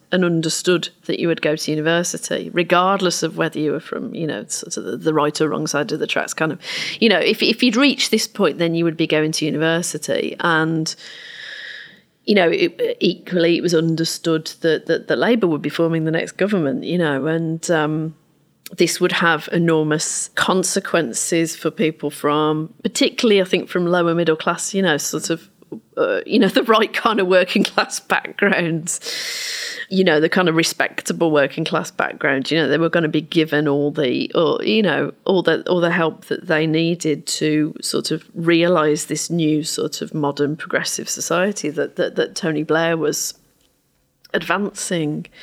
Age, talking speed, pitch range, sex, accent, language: 30-49, 190 wpm, 155-180 Hz, female, British, English